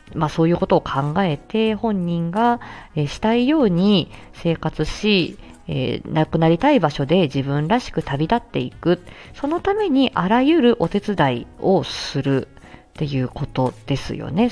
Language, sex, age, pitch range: Japanese, female, 40-59, 145-235 Hz